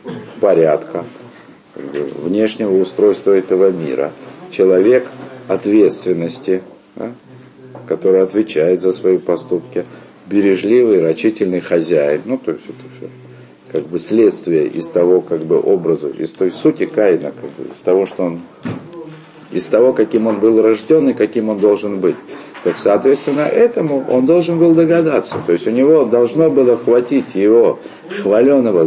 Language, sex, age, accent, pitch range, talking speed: Russian, male, 50-69, native, 100-170 Hz, 135 wpm